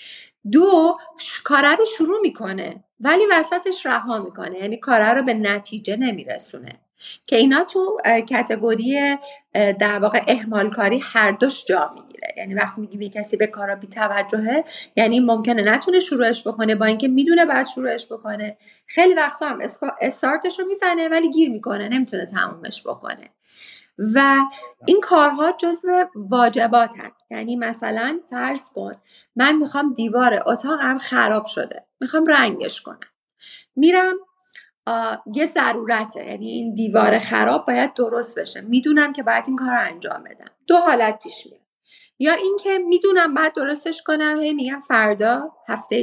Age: 30-49